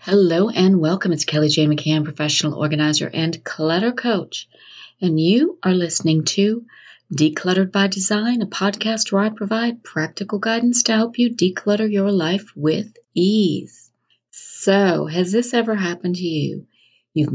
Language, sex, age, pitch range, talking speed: English, female, 40-59, 170-235 Hz, 150 wpm